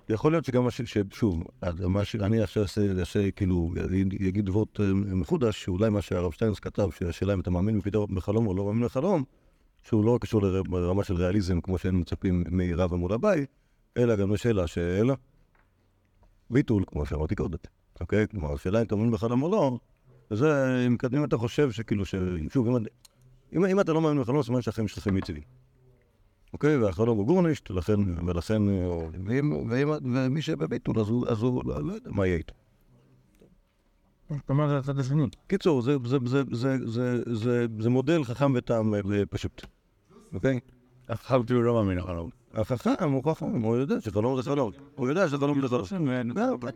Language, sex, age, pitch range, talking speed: Hebrew, male, 50-69, 95-130 Hz, 155 wpm